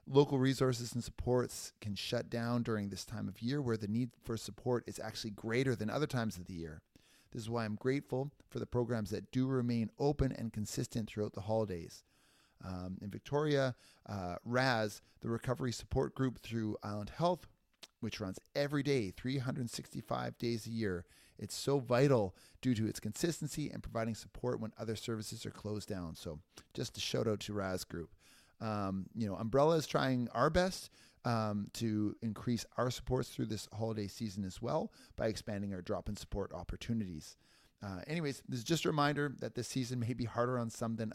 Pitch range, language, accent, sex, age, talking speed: 105-130 Hz, English, American, male, 30-49, 190 wpm